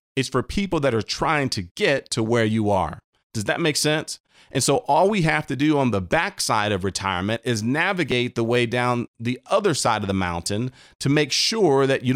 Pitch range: 105-135 Hz